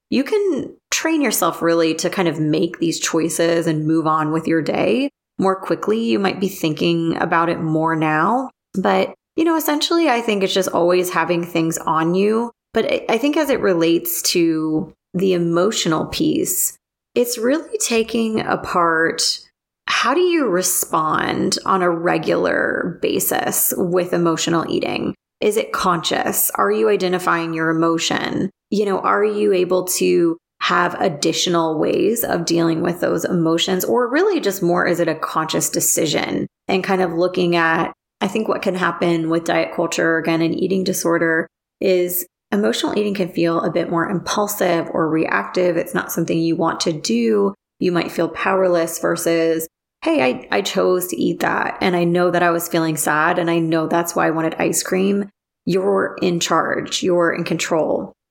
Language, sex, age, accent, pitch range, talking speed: English, female, 30-49, American, 165-200 Hz, 170 wpm